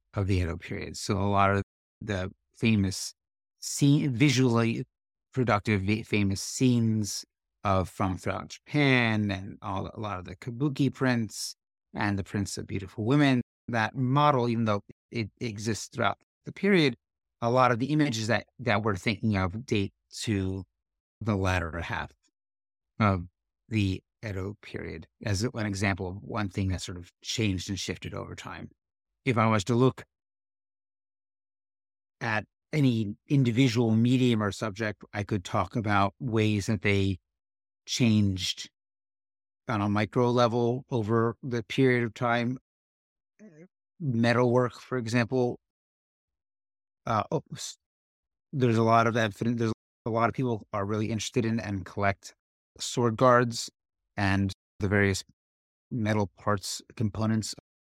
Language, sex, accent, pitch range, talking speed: English, male, American, 95-120 Hz, 135 wpm